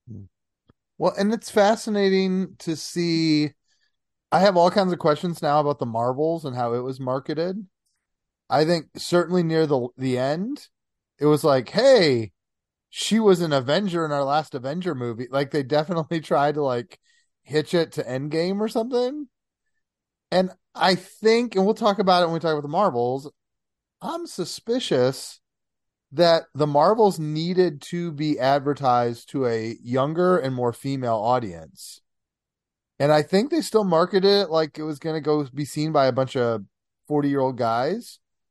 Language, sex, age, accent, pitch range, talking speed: English, male, 30-49, American, 135-185 Hz, 165 wpm